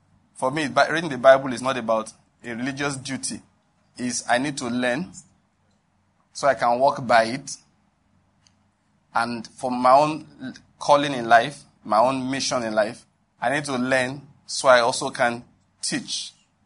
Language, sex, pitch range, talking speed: English, male, 115-135 Hz, 155 wpm